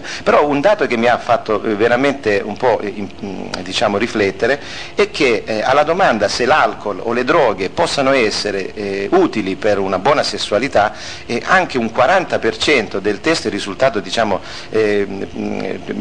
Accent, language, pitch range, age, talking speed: native, Italian, 100-120 Hz, 50-69, 150 wpm